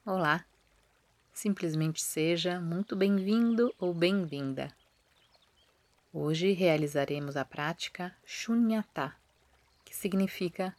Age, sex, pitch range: 30-49, female, 150-195 Hz